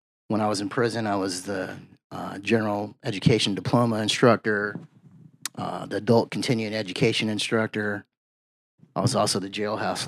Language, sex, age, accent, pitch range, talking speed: English, male, 30-49, American, 105-130 Hz, 145 wpm